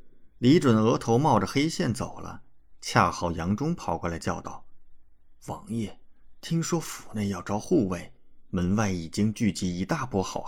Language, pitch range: Chinese, 85-120 Hz